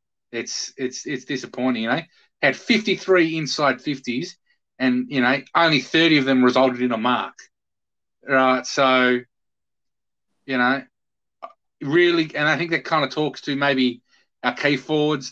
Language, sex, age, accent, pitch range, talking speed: English, male, 30-49, Australian, 130-145 Hz, 155 wpm